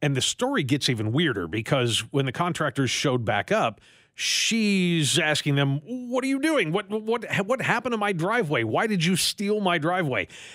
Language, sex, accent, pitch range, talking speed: English, male, American, 130-180 Hz, 190 wpm